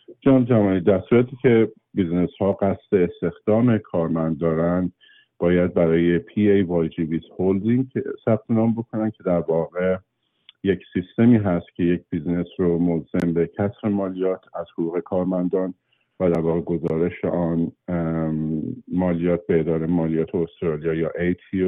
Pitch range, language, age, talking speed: 85-95 Hz, Persian, 50-69, 135 wpm